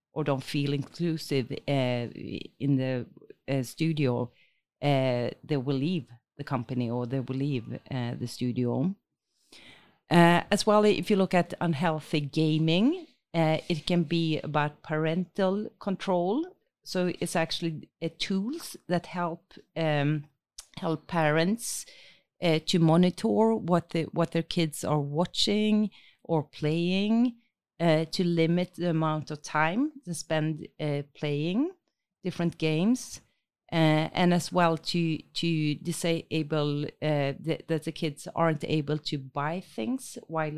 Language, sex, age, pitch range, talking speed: English, female, 40-59, 150-180 Hz, 135 wpm